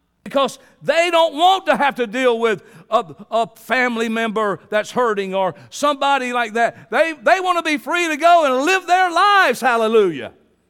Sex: male